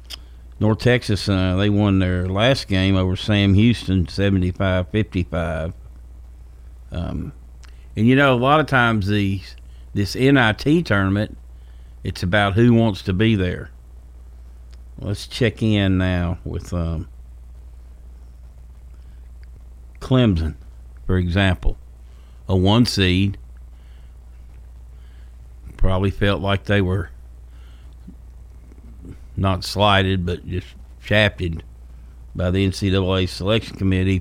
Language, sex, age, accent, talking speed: English, male, 50-69, American, 100 wpm